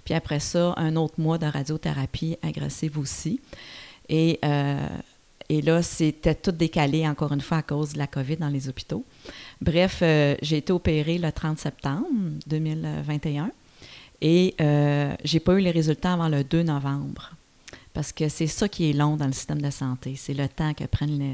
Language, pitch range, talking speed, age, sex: French, 145-170 Hz, 185 wpm, 40-59, female